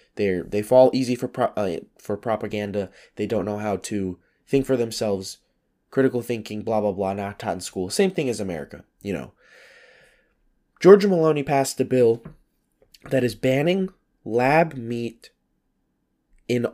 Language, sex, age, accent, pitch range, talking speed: English, male, 20-39, American, 105-135 Hz, 155 wpm